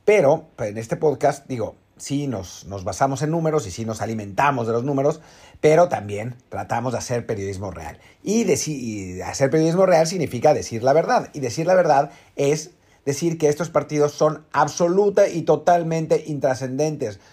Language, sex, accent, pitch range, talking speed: Spanish, male, Mexican, 135-180 Hz, 165 wpm